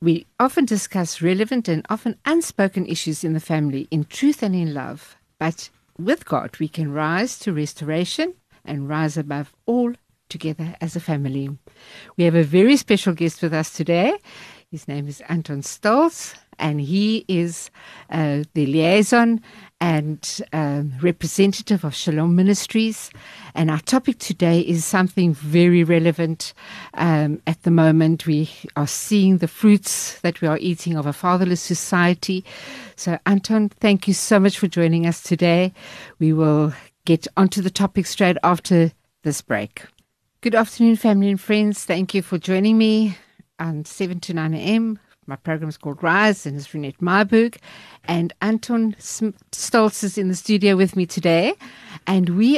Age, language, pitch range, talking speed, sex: 60-79, English, 160-205 Hz, 160 wpm, female